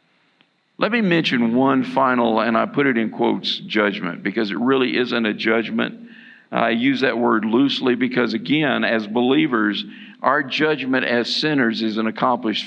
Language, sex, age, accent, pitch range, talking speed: English, male, 50-69, American, 120-180 Hz, 160 wpm